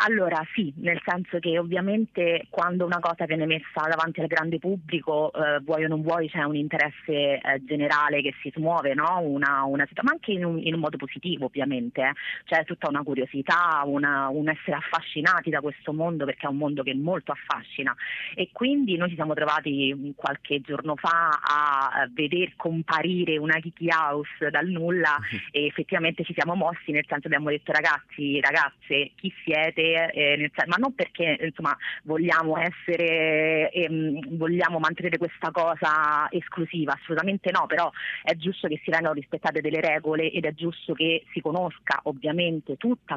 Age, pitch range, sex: 30-49, 145-170 Hz, female